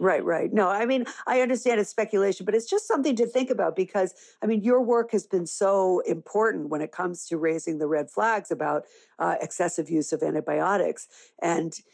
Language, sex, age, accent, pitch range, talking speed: English, female, 50-69, American, 155-195 Hz, 200 wpm